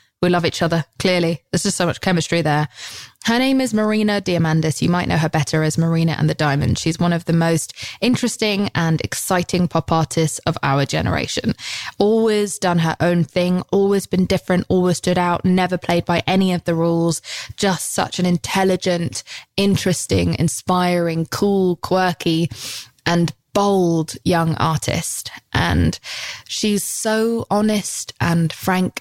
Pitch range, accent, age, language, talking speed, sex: 165-190 Hz, British, 20-39, English, 155 wpm, female